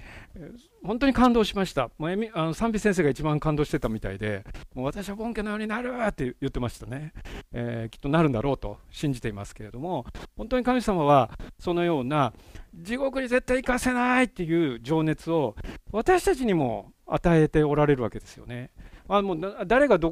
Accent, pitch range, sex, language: native, 130-210 Hz, male, Japanese